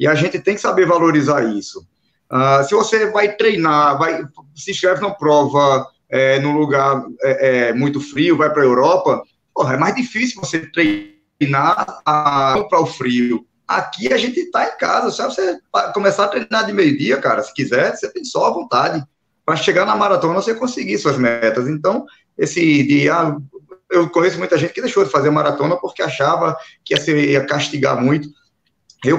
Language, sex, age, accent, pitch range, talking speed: Portuguese, male, 20-39, Brazilian, 140-195 Hz, 185 wpm